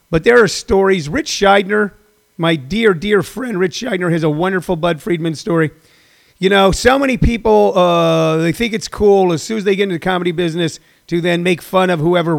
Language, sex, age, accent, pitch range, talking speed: English, male, 40-59, American, 170-210 Hz, 210 wpm